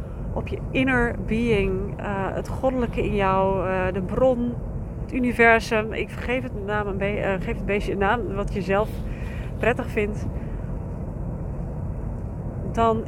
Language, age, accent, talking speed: Dutch, 30-49, Dutch, 145 wpm